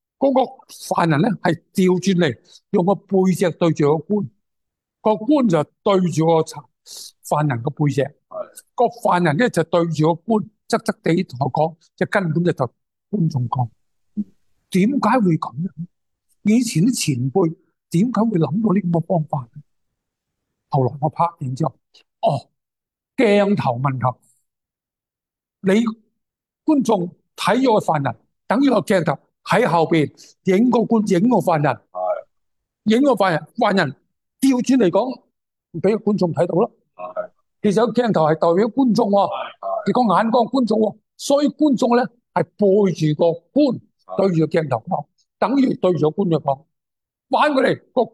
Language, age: Chinese, 60-79